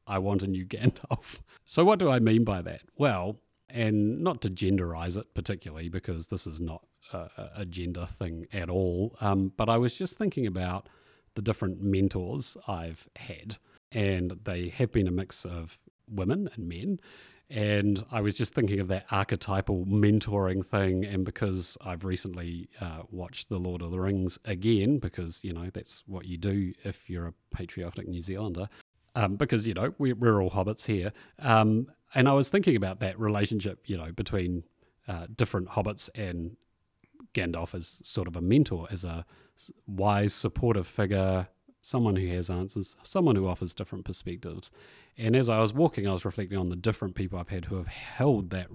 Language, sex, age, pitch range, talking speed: English, male, 30-49, 90-115 Hz, 180 wpm